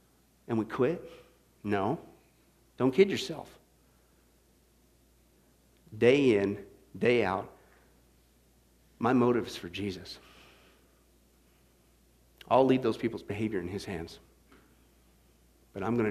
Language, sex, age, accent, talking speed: English, male, 50-69, American, 100 wpm